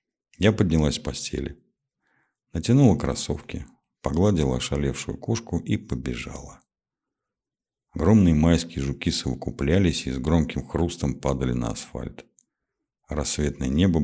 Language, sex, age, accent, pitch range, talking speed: Russian, male, 50-69, native, 70-85 Hz, 105 wpm